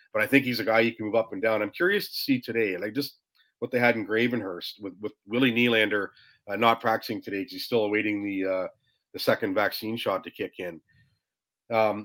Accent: American